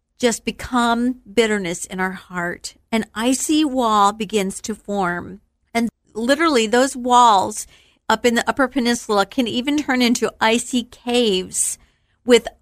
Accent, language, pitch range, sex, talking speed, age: American, English, 205-265 Hz, female, 135 wpm, 50-69